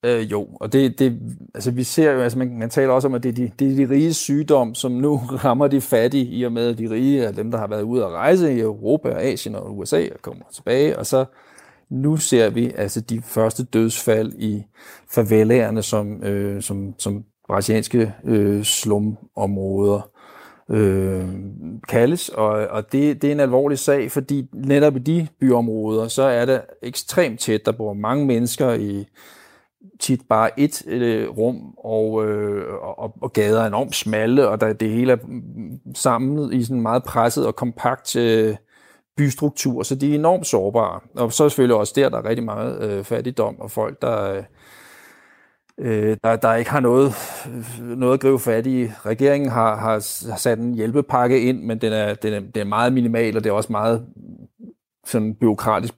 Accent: native